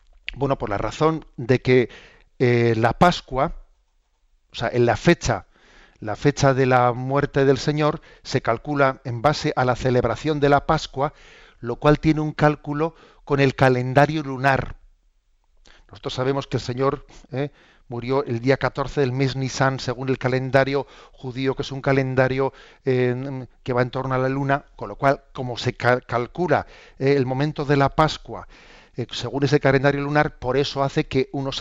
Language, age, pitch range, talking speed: Spanish, 40-59, 125-140 Hz, 170 wpm